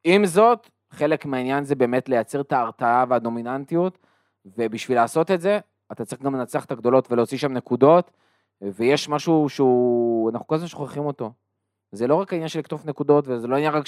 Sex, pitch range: male, 130-175 Hz